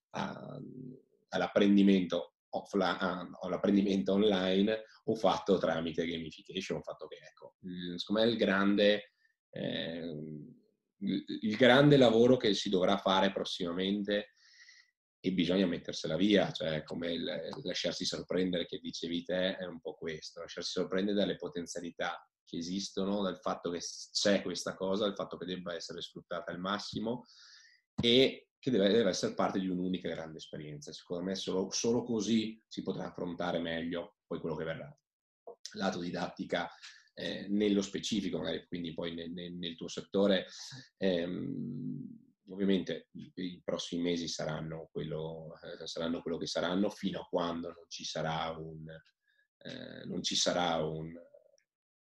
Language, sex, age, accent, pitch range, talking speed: Italian, male, 30-49, native, 85-105 Hz, 145 wpm